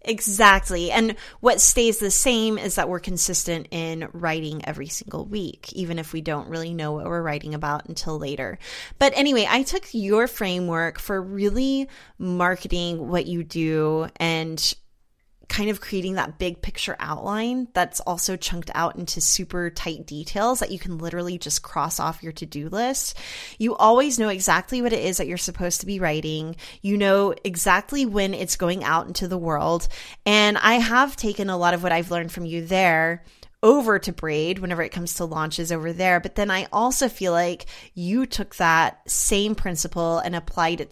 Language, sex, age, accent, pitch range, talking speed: English, female, 20-39, American, 165-205 Hz, 185 wpm